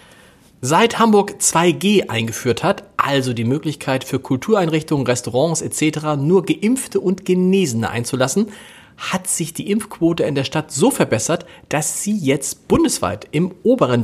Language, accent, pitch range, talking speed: German, German, 120-165 Hz, 135 wpm